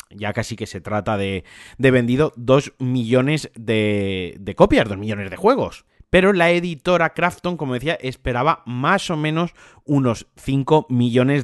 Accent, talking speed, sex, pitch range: Spanish, 155 wpm, male, 115-145 Hz